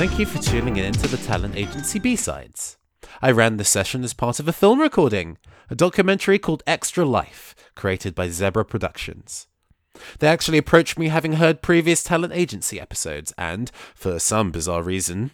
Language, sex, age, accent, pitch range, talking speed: English, male, 20-39, British, 100-160 Hz, 170 wpm